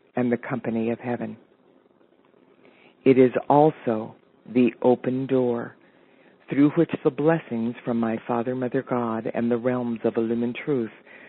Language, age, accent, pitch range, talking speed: English, 50-69, American, 115-135 Hz, 135 wpm